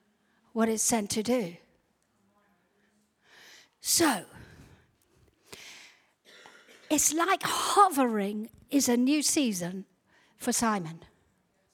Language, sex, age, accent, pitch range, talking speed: English, female, 50-69, British, 225-325 Hz, 75 wpm